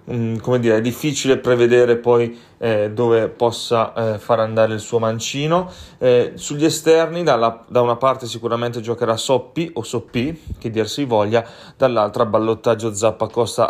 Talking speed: 155 wpm